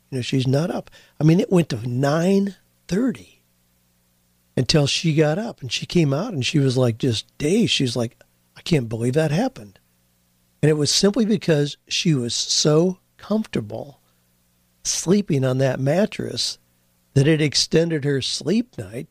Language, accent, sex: English, American, male